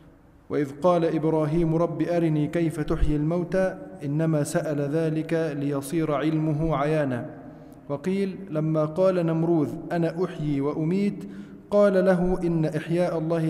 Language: Arabic